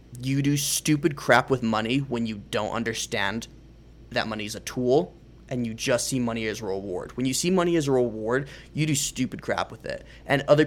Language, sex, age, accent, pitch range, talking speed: English, male, 20-39, American, 115-135 Hz, 215 wpm